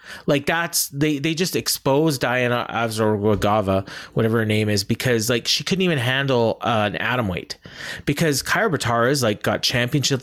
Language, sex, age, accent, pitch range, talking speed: English, male, 30-49, American, 110-145 Hz, 165 wpm